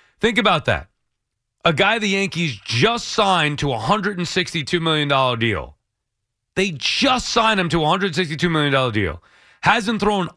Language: English